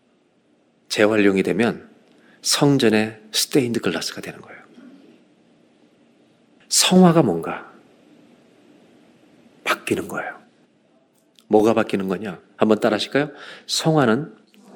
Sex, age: male, 40-59